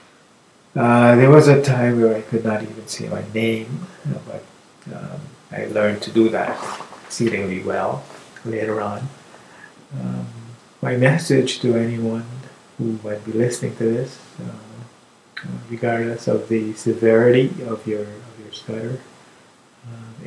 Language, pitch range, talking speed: English, 110-125 Hz, 135 wpm